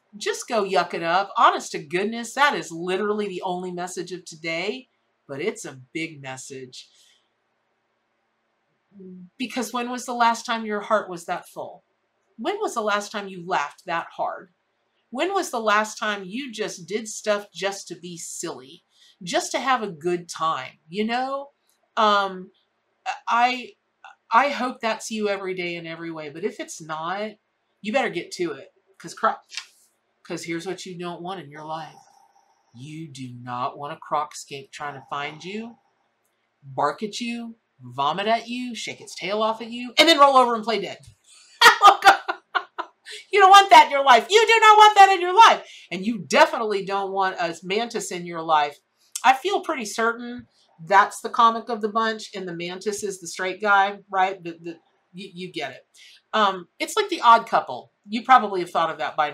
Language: English